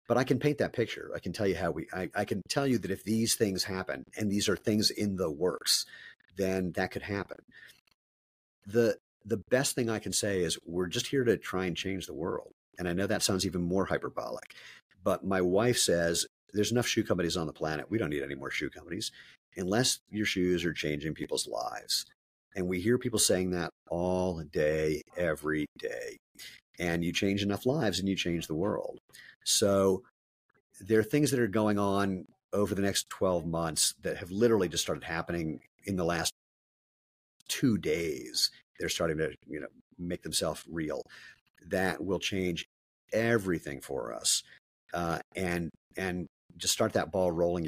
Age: 50-69